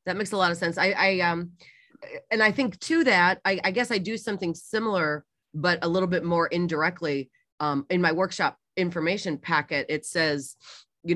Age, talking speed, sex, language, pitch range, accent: 30-49, 195 wpm, female, English, 155-190 Hz, American